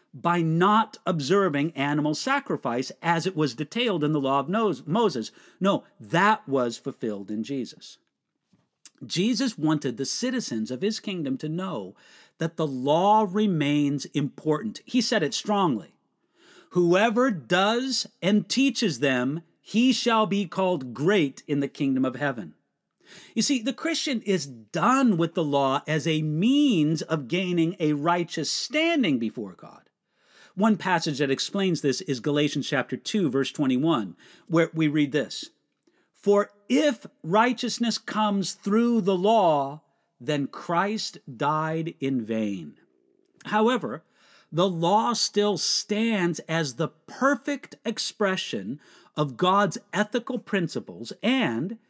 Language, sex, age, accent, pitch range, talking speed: English, male, 50-69, American, 150-220 Hz, 130 wpm